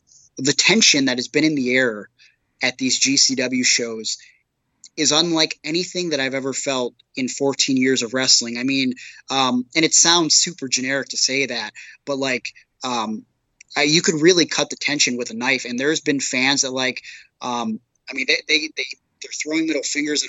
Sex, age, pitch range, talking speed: male, 20-39, 130-160 Hz, 190 wpm